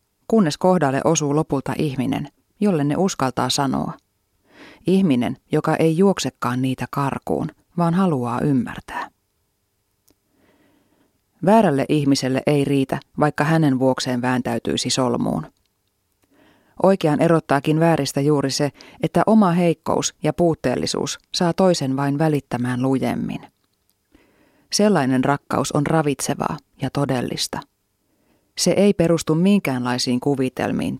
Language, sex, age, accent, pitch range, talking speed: Finnish, female, 30-49, native, 130-170 Hz, 105 wpm